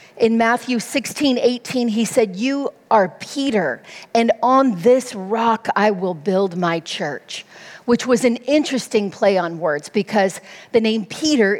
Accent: American